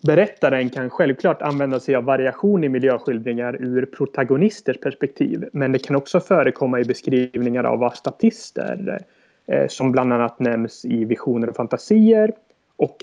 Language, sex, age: Swedish, male, 30-49